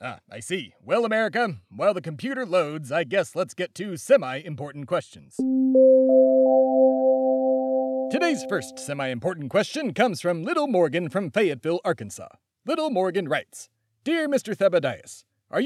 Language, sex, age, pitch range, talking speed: English, male, 30-49, 135-205 Hz, 130 wpm